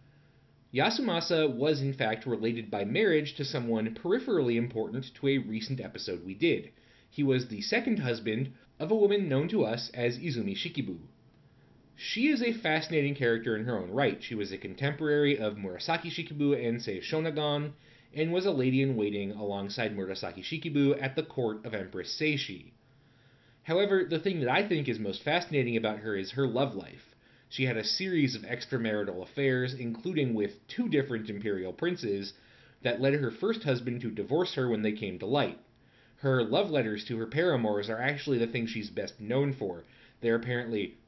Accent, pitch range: American, 110-145 Hz